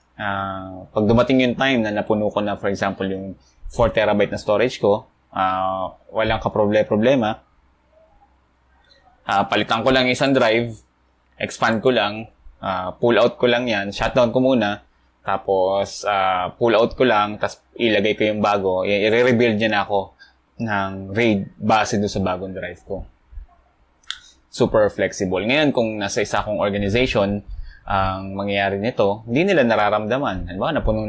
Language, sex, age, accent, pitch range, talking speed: English, male, 20-39, Filipino, 95-115 Hz, 150 wpm